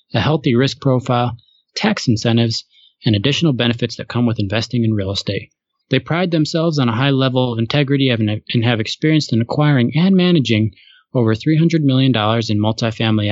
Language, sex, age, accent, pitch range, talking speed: English, male, 20-39, American, 110-135 Hz, 165 wpm